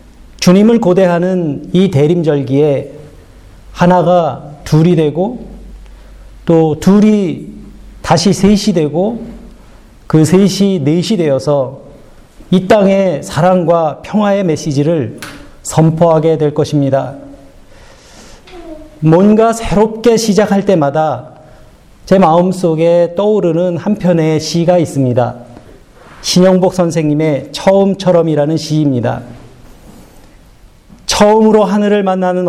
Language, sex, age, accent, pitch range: Korean, male, 40-59, native, 150-195 Hz